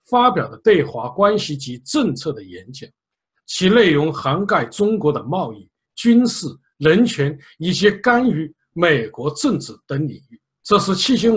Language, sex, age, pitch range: Chinese, male, 60-79, 145-225 Hz